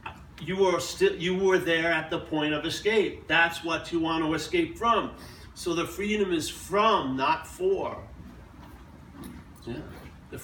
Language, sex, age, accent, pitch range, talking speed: English, male, 50-69, American, 150-195 Hz, 155 wpm